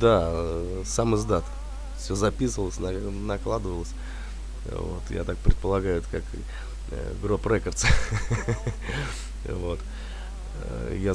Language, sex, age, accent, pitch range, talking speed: Russian, male, 20-39, native, 85-100 Hz, 80 wpm